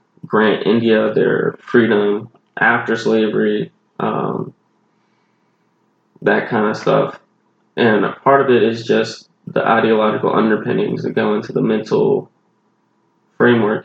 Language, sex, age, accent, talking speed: English, male, 20-39, American, 115 wpm